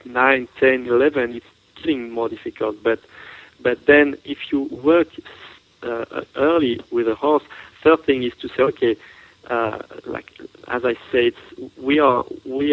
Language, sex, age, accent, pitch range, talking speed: English, male, 40-59, French, 120-150 Hz, 155 wpm